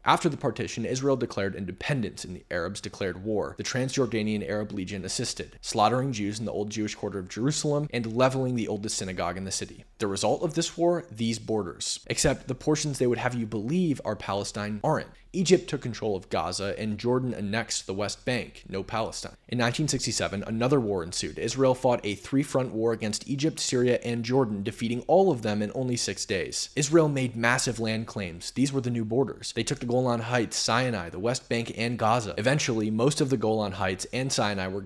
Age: 20-39